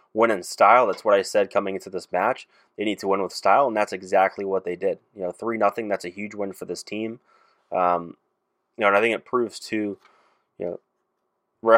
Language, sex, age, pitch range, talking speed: English, male, 20-39, 95-115 Hz, 225 wpm